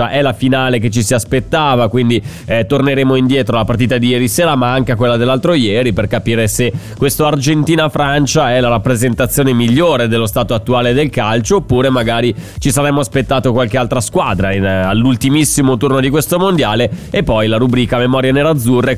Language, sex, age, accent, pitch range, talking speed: Italian, male, 30-49, native, 120-145 Hz, 175 wpm